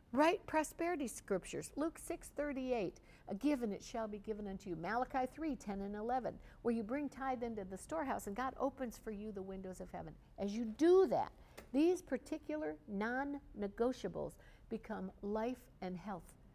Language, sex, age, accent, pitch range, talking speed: English, female, 60-79, American, 185-255 Hz, 170 wpm